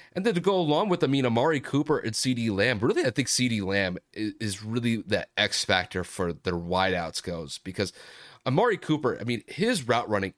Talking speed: 200 wpm